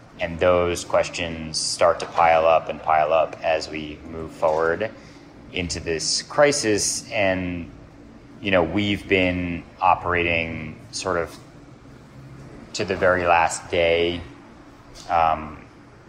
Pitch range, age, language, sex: 80-95 Hz, 30-49, English, male